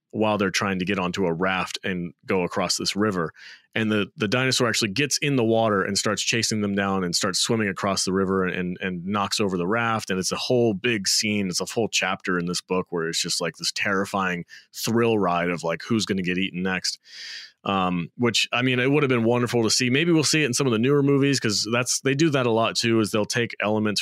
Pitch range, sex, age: 95-115 Hz, male, 30-49